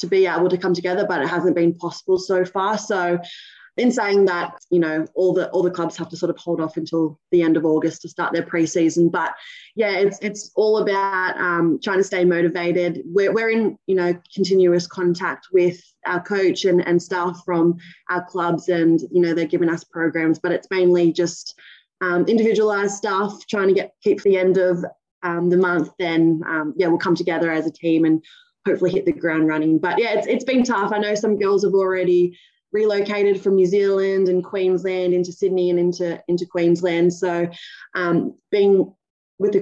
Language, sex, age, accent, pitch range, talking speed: English, female, 20-39, Australian, 170-195 Hz, 205 wpm